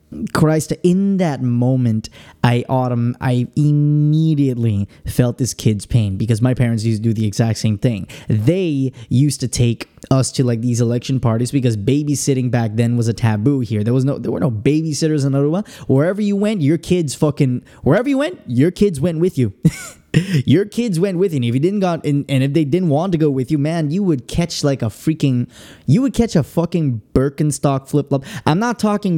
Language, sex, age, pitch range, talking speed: English, male, 20-39, 125-165 Hz, 210 wpm